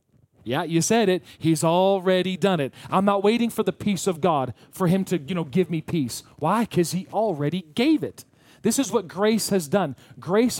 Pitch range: 150-210 Hz